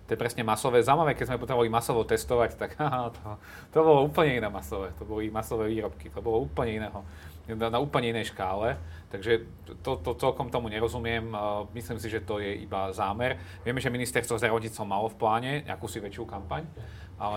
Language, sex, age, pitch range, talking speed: Slovak, male, 40-59, 95-115 Hz, 200 wpm